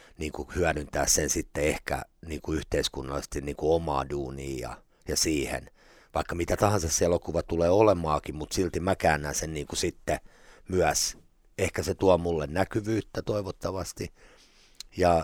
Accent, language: native, Finnish